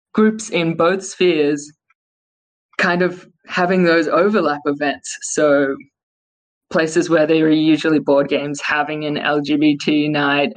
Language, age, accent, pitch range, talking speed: English, 20-39, Australian, 145-180 Hz, 125 wpm